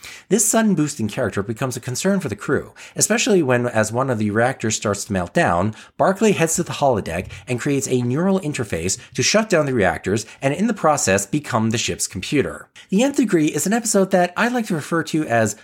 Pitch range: 100-150 Hz